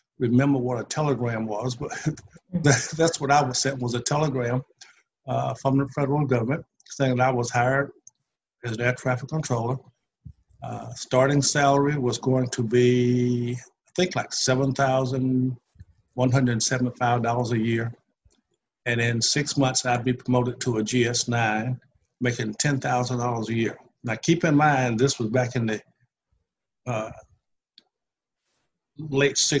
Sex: male